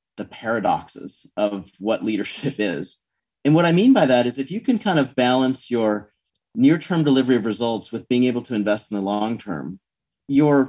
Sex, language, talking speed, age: male, English, 185 wpm, 30-49